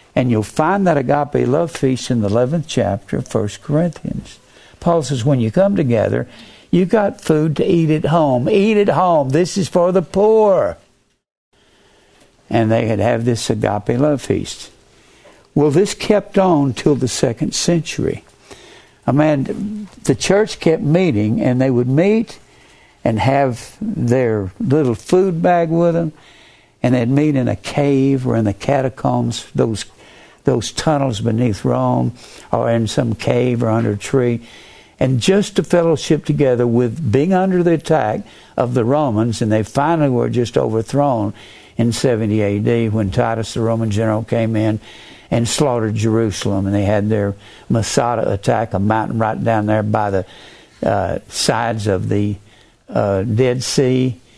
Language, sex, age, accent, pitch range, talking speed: English, male, 60-79, American, 110-155 Hz, 160 wpm